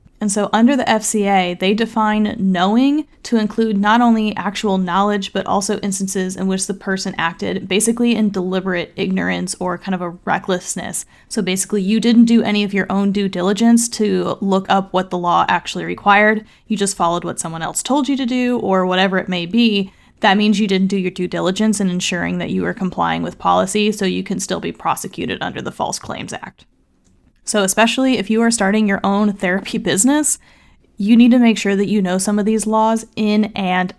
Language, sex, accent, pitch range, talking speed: English, female, American, 185-225 Hz, 205 wpm